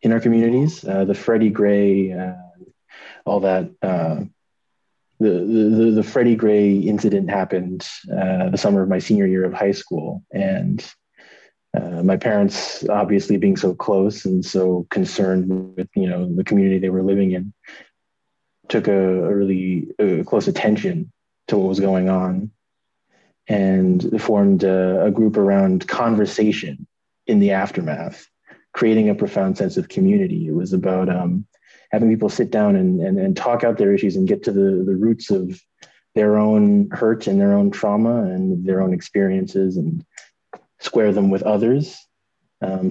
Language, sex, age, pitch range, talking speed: English, male, 20-39, 95-120 Hz, 160 wpm